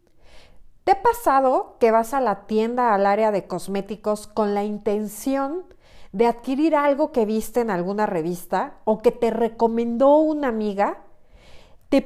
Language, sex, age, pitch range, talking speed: Spanish, female, 40-59, 205-280 Hz, 150 wpm